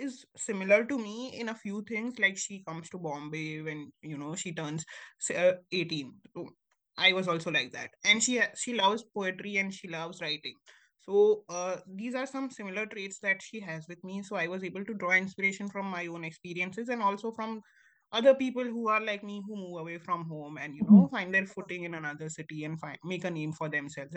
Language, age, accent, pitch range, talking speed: English, 20-39, Indian, 170-225 Hz, 215 wpm